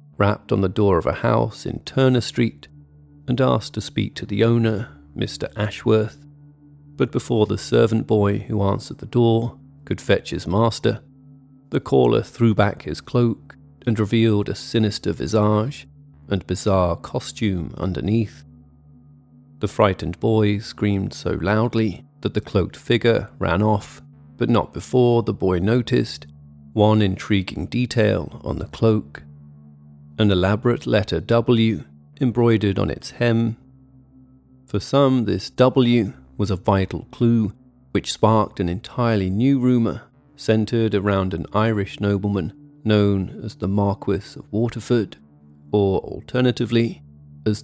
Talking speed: 135 wpm